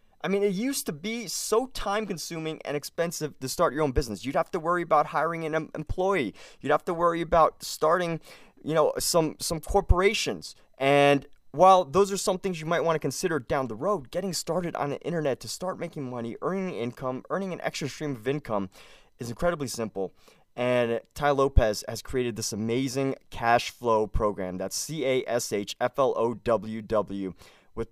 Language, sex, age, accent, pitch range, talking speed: English, male, 20-39, American, 115-165 Hz, 195 wpm